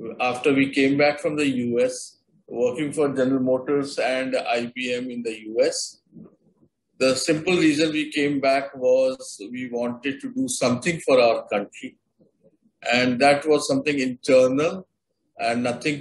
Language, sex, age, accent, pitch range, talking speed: English, male, 50-69, Indian, 130-170 Hz, 140 wpm